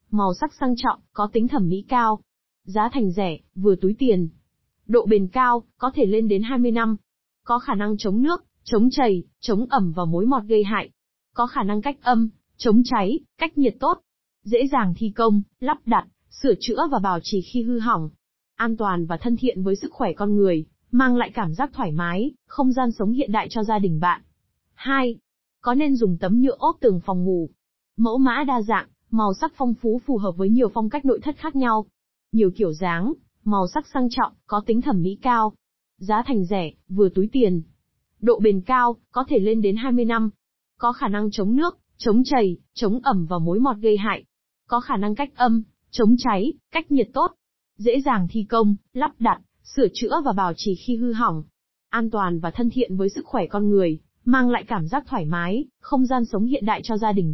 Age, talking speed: 20-39, 215 wpm